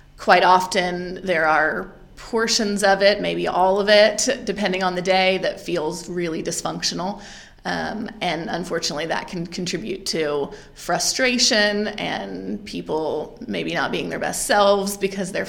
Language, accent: English, American